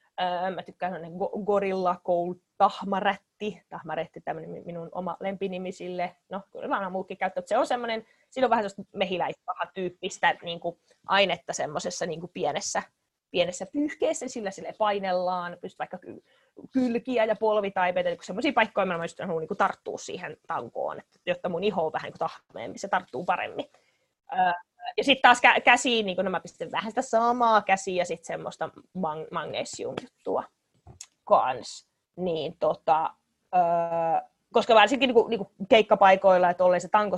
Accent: native